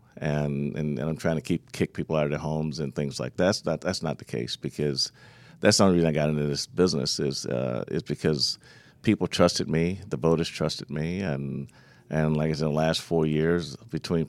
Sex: male